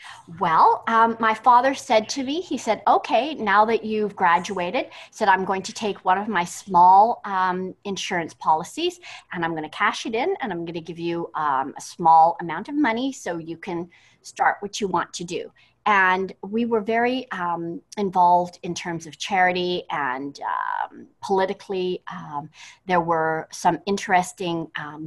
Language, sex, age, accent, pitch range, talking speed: English, female, 40-59, American, 175-225 Hz, 175 wpm